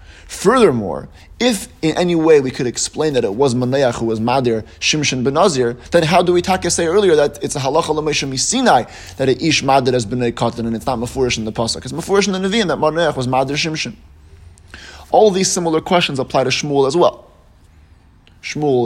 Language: English